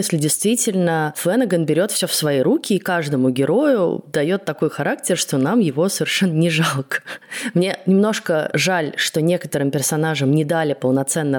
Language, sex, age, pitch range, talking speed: Russian, female, 20-39, 140-185 Hz, 155 wpm